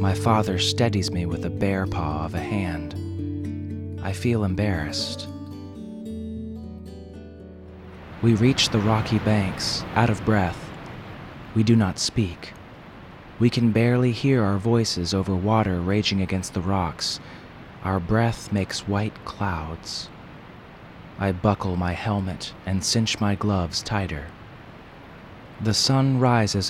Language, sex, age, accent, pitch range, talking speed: English, male, 30-49, American, 95-110 Hz, 125 wpm